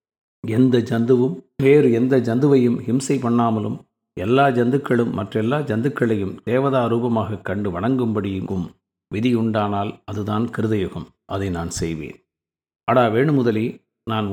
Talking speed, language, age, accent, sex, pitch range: 105 wpm, Tamil, 50-69, native, male, 100-125 Hz